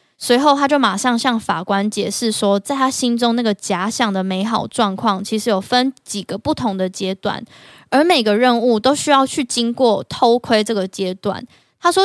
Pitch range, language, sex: 205-255 Hz, Chinese, female